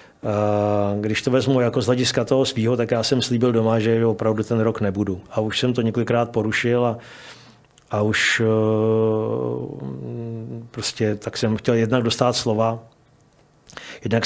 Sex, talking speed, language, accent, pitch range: male, 145 wpm, Czech, native, 110-125 Hz